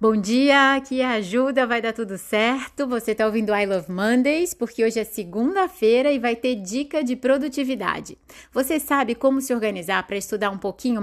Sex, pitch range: female, 185-250 Hz